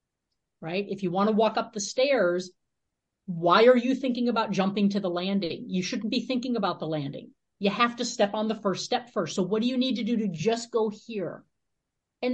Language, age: English, 50-69